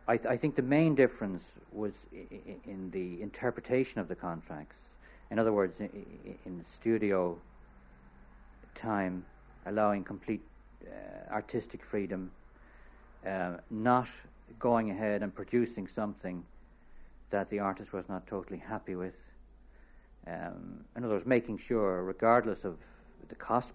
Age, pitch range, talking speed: 60-79, 90-110 Hz, 125 wpm